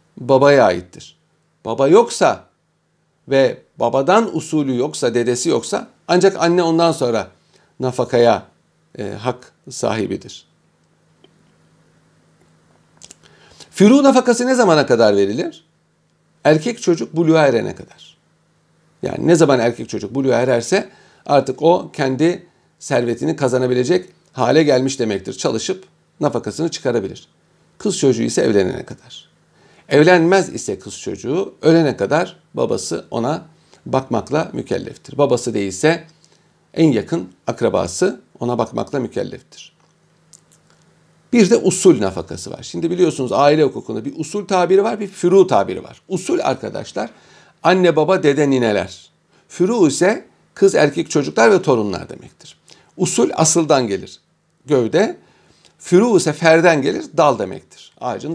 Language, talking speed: Turkish, 115 wpm